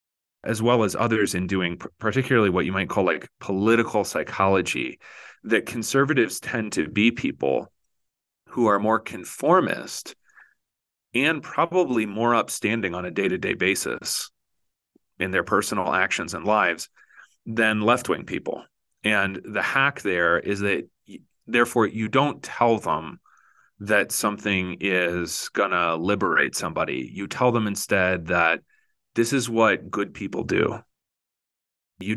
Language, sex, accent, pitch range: English, male, American, 95-115 Hz